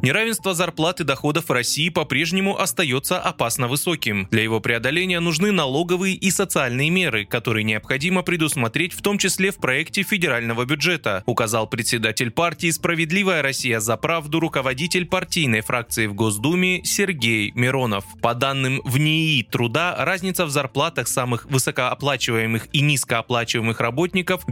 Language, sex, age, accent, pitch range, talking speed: Russian, male, 20-39, native, 125-175 Hz, 135 wpm